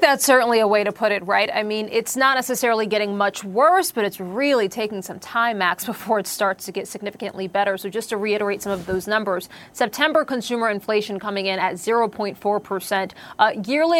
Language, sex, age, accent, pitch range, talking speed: English, female, 30-49, American, 200-260 Hz, 200 wpm